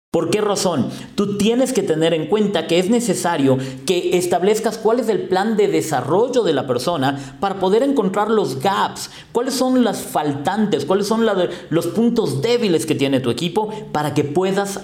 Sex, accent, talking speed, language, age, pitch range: male, Mexican, 180 wpm, Spanish, 40-59, 145-220 Hz